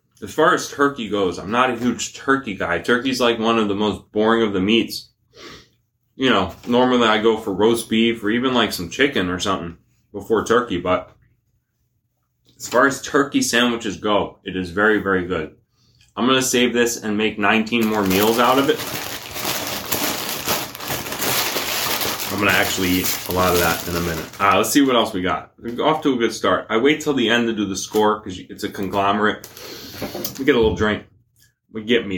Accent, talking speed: American, 200 wpm